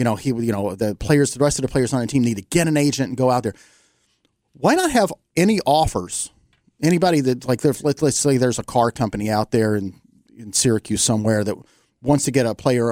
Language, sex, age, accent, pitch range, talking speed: English, male, 40-59, American, 115-155 Hz, 230 wpm